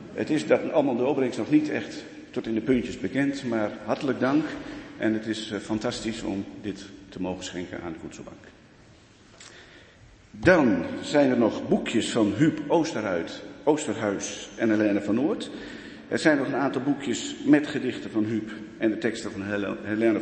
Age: 50-69